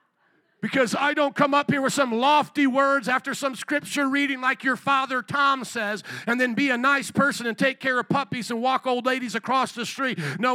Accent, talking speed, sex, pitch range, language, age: American, 215 wpm, male, 200-280 Hz, English, 50-69